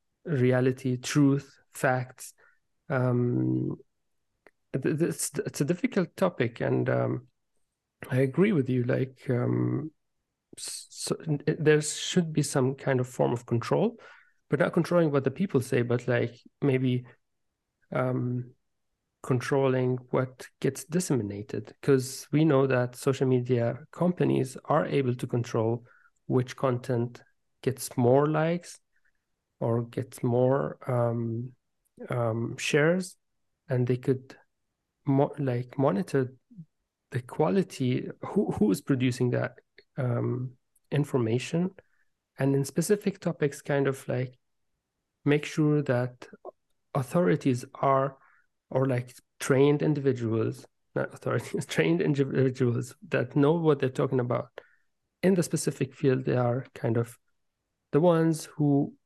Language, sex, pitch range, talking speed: English, male, 125-150 Hz, 120 wpm